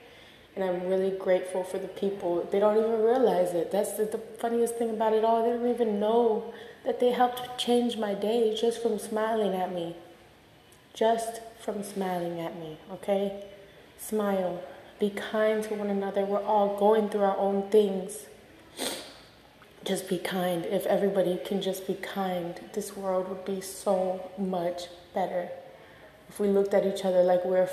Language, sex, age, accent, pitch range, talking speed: English, female, 20-39, American, 180-205 Hz, 170 wpm